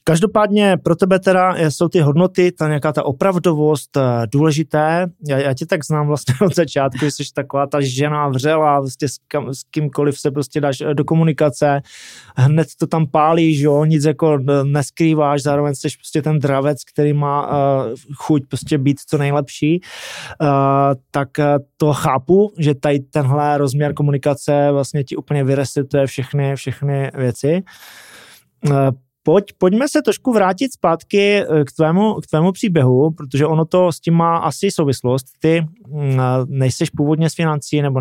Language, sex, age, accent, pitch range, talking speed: Czech, male, 20-39, native, 135-160 Hz, 145 wpm